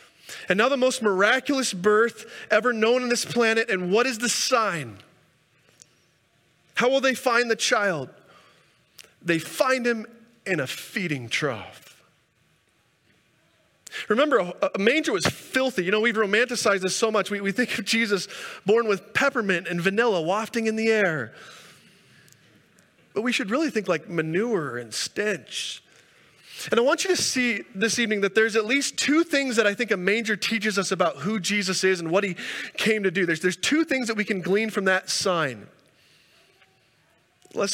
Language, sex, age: English, male, 30-49